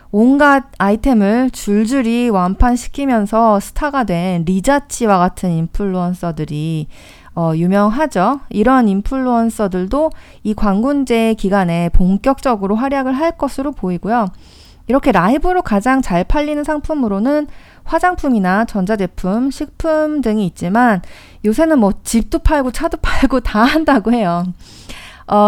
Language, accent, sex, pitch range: Korean, native, female, 195-290 Hz